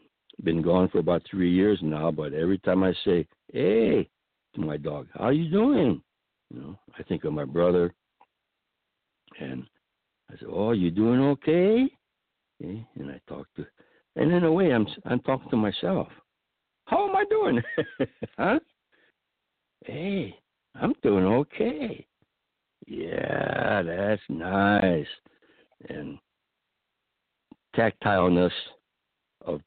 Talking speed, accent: 125 wpm, American